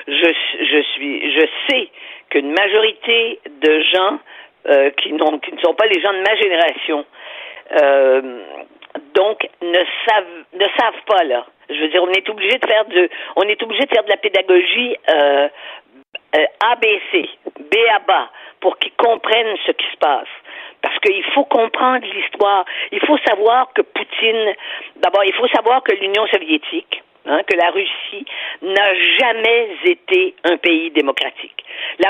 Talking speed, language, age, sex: 155 wpm, French, 50-69, female